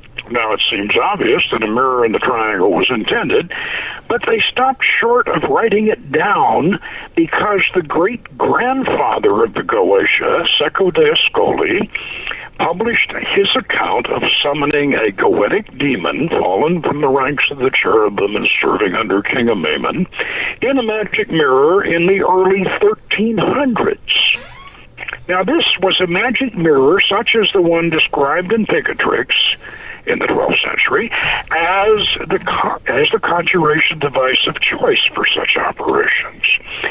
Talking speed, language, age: 140 wpm, English, 60-79